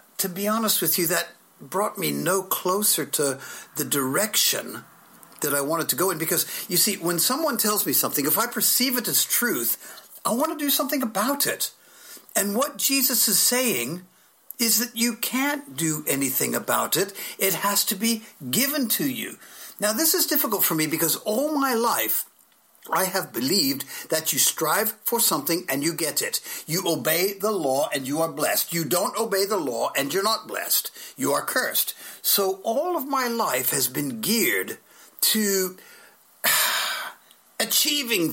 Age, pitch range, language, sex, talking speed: 50-69, 175-245 Hz, English, male, 175 wpm